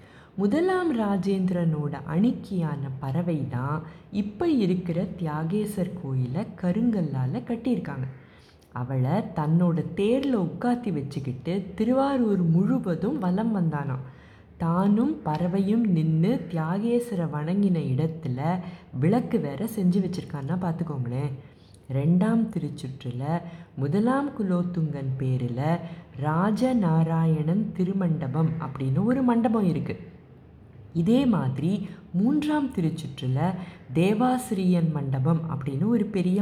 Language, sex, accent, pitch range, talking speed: Tamil, female, native, 150-215 Hz, 80 wpm